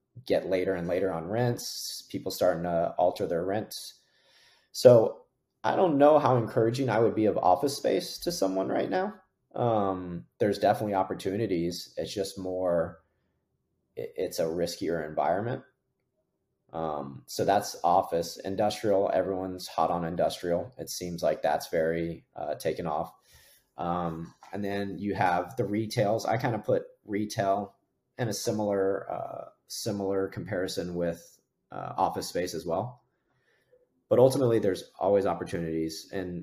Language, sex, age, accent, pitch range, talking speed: English, male, 30-49, American, 85-105 Hz, 140 wpm